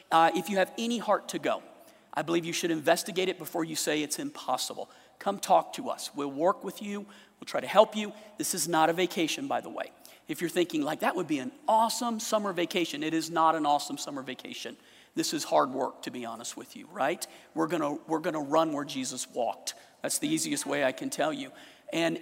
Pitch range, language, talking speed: 165-225 Hz, English, 230 wpm